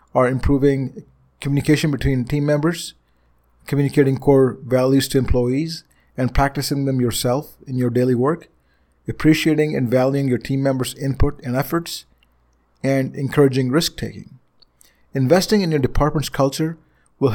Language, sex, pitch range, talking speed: English, male, 120-145 Hz, 130 wpm